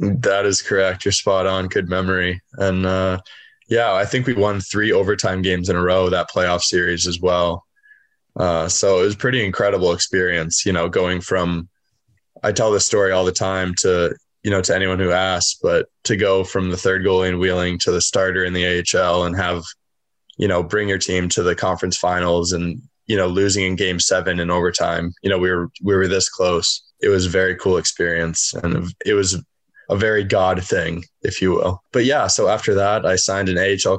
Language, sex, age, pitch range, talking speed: English, male, 20-39, 90-100 Hz, 210 wpm